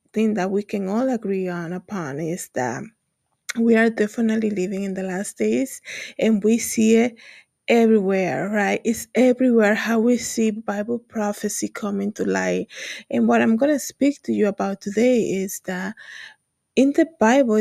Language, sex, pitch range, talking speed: English, female, 200-240 Hz, 165 wpm